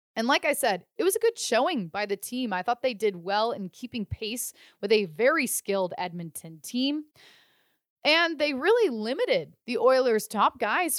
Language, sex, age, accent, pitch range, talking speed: English, female, 20-39, American, 205-290 Hz, 185 wpm